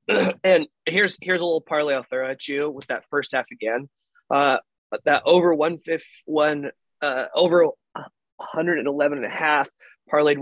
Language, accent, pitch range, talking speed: English, American, 120-160 Hz, 160 wpm